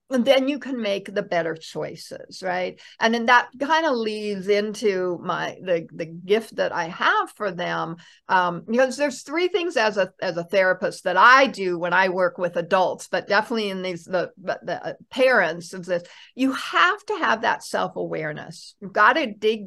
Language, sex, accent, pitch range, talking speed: English, female, American, 185-255 Hz, 190 wpm